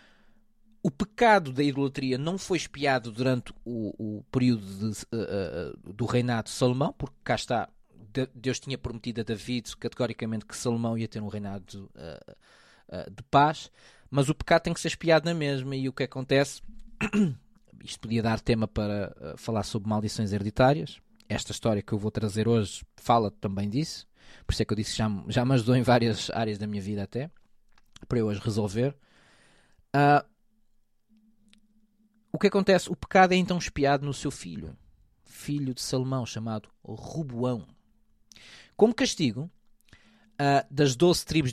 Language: Portuguese